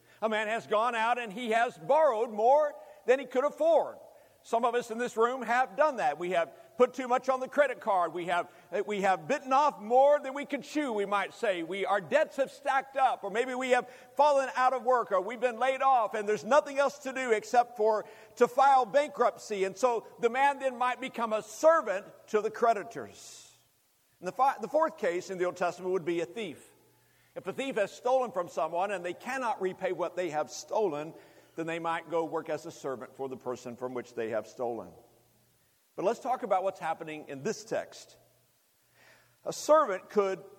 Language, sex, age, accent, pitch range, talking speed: English, male, 50-69, American, 180-265 Hz, 215 wpm